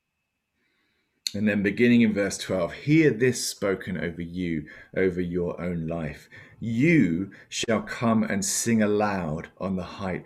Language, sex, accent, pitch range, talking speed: English, male, British, 85-105 Hz, 140 wpm